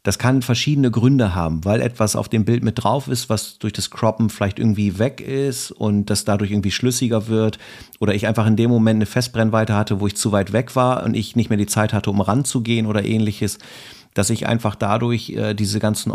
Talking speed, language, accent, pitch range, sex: 225 wpm, German, German, 105-130 Hz, male